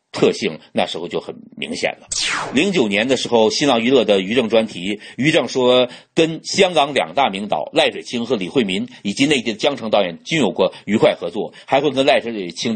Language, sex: Chinese, male